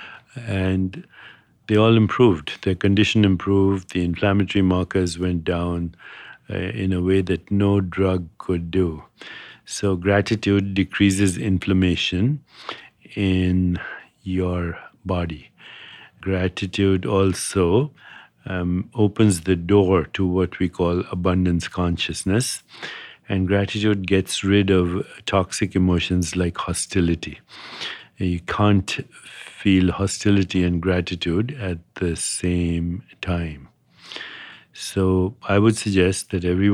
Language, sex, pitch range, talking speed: English, male, 90-100 Hz, 105 wpm